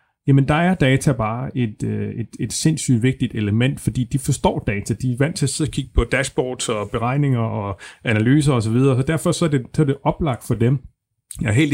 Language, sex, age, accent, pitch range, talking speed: Danish, male, 30-49, native, 110-145 Hz, 225 wpm